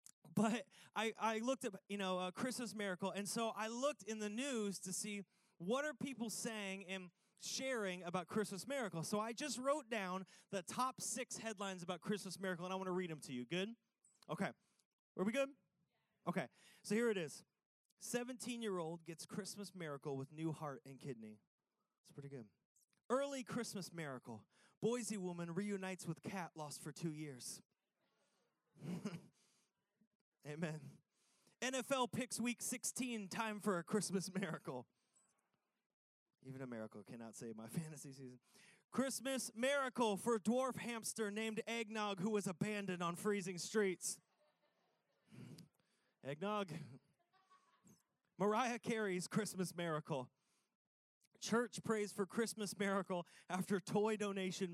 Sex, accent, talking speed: male, American, 140 wpm